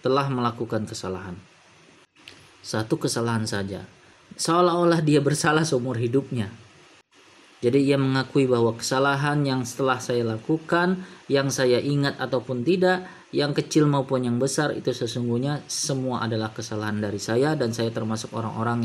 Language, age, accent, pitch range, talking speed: Indonesian, 20-39, native, 115-150 Hz, 130 wpm